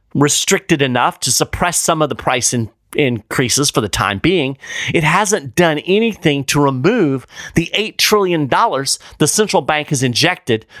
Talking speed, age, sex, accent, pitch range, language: 150 wpm, 30-49, male, American, 125-190 Hz, English